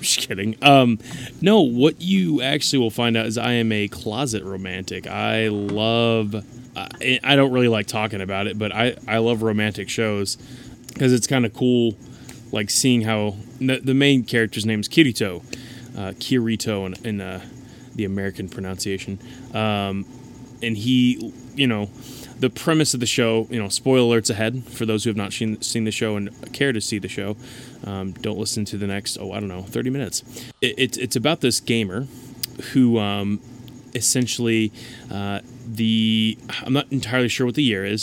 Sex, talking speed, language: male, 185 wpm, English